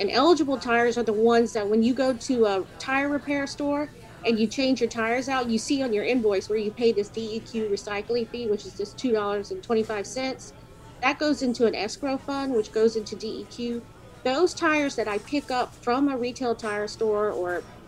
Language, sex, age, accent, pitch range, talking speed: English, female, 40-59, American, 210-255 Hz, 200 wpm